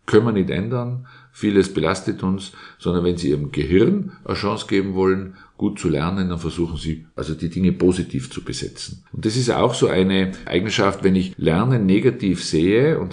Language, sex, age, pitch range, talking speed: German, male, 50-69, 80-100 Hz, 190 wpm